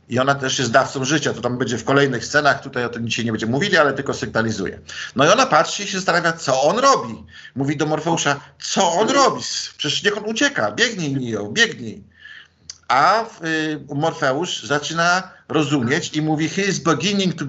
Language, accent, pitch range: Polish, native, 135-170 Hz